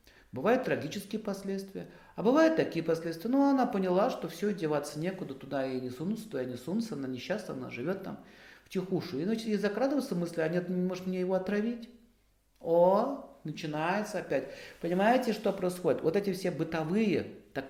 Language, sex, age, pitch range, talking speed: Russian, male, 40-59, 135-190 Hz, 165 wpm